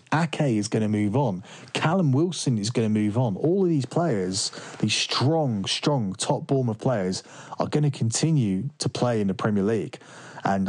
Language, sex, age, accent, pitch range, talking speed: English, male, 30-49, British, 100-125 Hz, 190 wpm